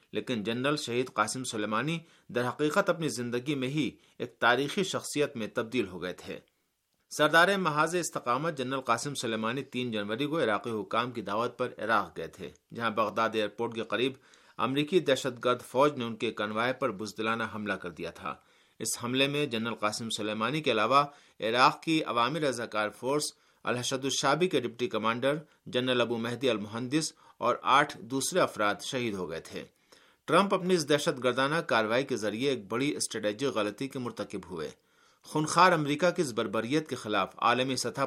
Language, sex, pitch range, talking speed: Urdu, male, 115-150 Hz, 170 wpm